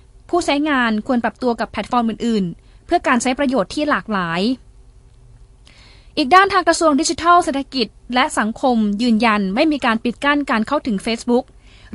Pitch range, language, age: 205-255 Hz, Thai, 20-39